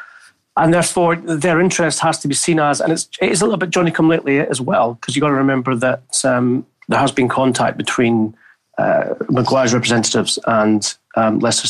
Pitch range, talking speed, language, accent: 115-160 Hz, 185 wpm, English, British